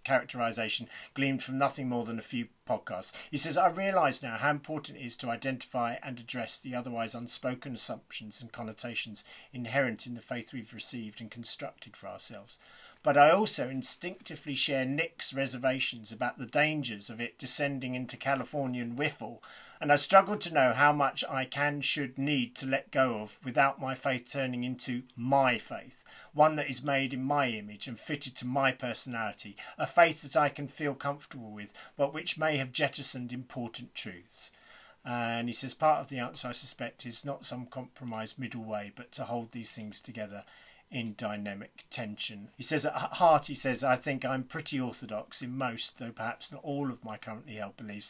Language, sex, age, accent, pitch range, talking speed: English, male, 40-59, British, 120-140 Hz, 185 wpm